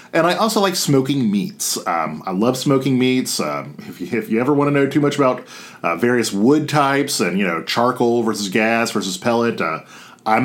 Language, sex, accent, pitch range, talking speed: English, male, American, 115-155 Hz, 205 wpm